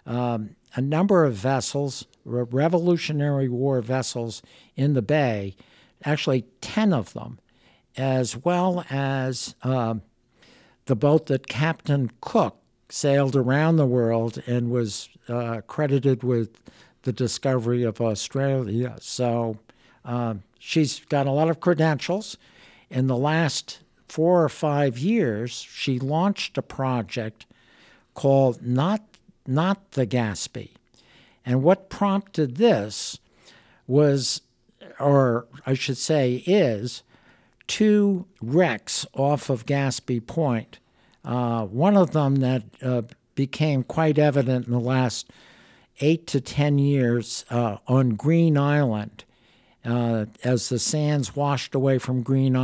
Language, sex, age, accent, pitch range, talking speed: English, male, 60-79, American, 120-150 Hz, 120 wpm